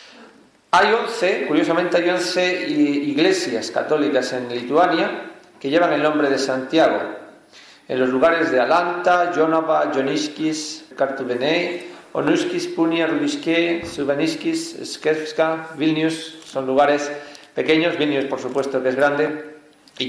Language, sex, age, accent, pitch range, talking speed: Spanish, male, 40-59, Spanish, 135-165 Hz, 115 wpm